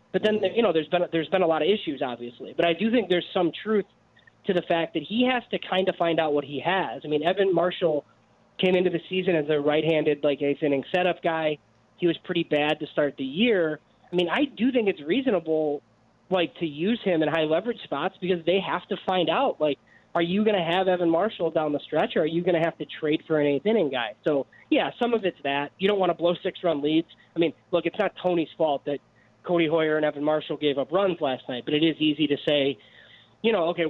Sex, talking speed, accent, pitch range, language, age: male, 245 wpm, American, 145-185 Hz, English, 20-39